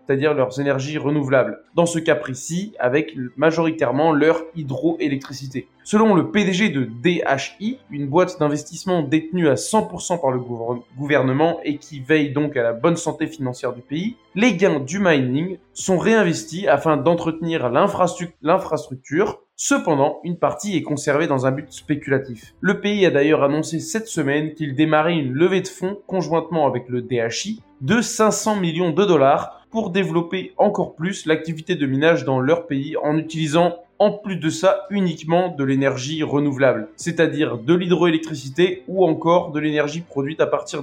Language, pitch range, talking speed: French, 140-175 Hz, 155 wpm